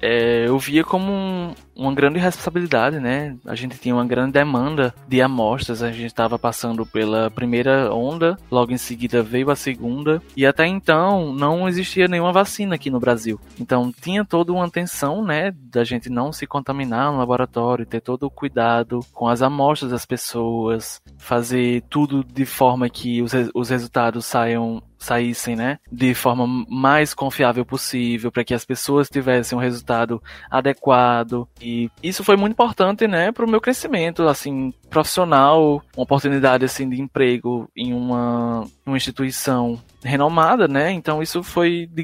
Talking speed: 160 wpm